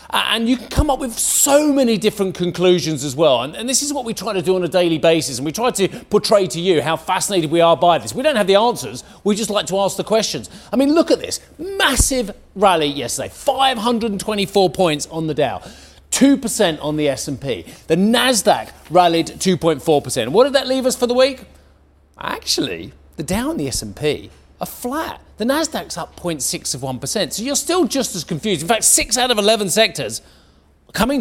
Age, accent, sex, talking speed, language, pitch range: 40-59, British, male, 205 wpm, English, 175-250 Hz